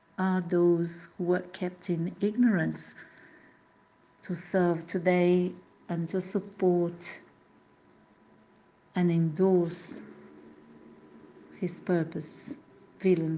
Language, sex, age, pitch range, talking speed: English, female, 60-79, 165-195 Hz, 80 wpm